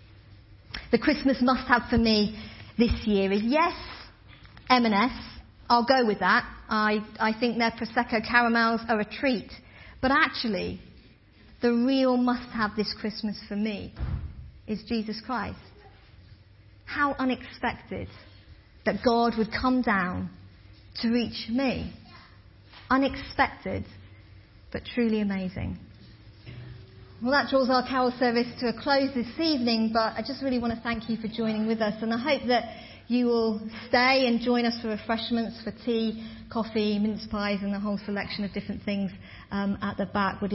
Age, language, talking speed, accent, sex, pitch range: 40-59, English, 150 wpm, British, female, 200-245 Hz